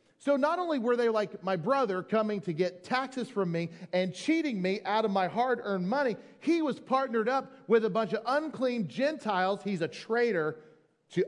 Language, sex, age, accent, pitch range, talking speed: English, male, 40-59, American, 165-225 Hz, 195 wpm